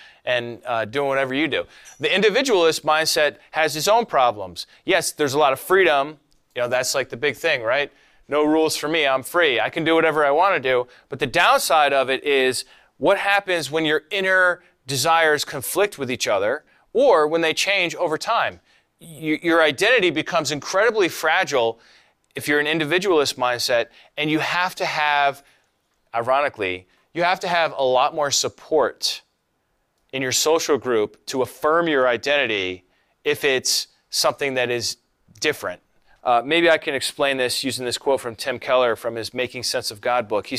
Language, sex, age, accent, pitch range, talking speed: English, male, 30-49, American, 125-165 Hz, 180 wpm